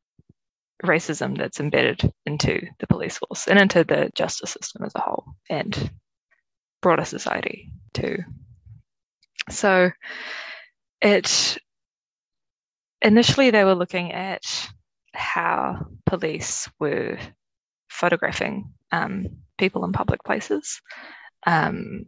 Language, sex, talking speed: English, female, 100 wpm